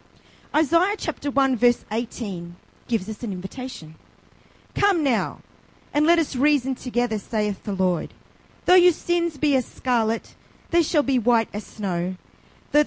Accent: Australian